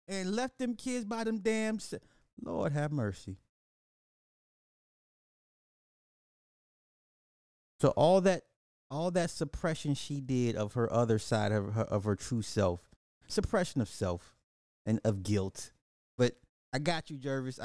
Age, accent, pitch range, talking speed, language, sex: 30-49, American, 105-145 Hz, 135 wpm, English, male